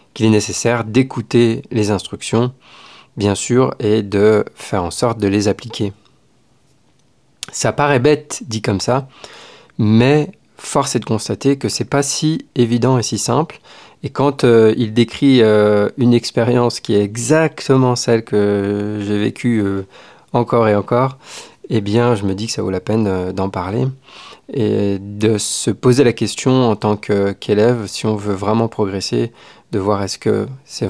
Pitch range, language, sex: 105-125 Hz, French, male